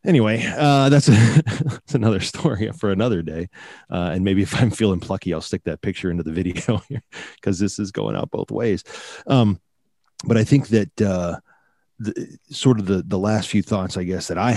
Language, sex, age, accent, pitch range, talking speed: English, male, 30-49, American, 85-105 Hz, 205 wpm